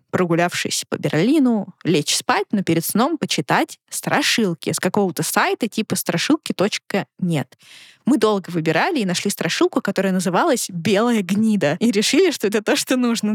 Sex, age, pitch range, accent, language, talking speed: female, 20-39, 185-235 Hz, native, Russian, 145 wpm